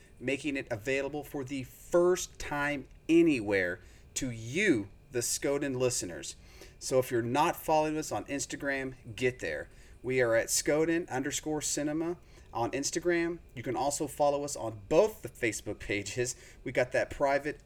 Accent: American